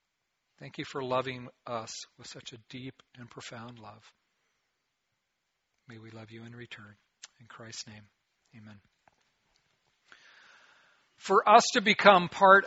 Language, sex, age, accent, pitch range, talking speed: English, male, 40-59, American, 125-170 Hz, 130 wpm